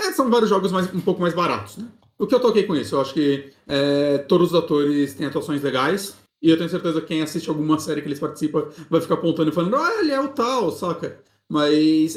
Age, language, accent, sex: 30-49, Portuguese, Brazilian, male